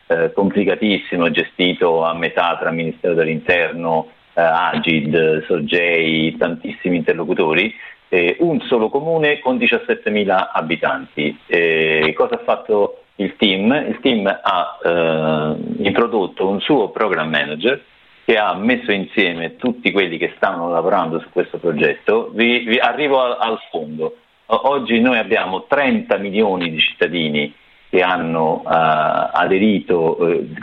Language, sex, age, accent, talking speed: Italian, male, 50-69, native, 125 wpm